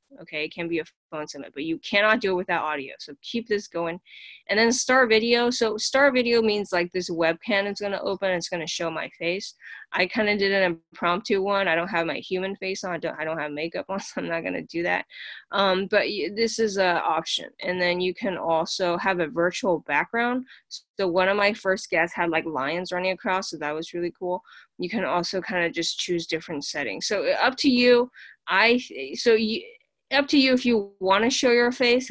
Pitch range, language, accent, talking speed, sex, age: 170-225 Hz, English, American, 235 wpm, female, 20-39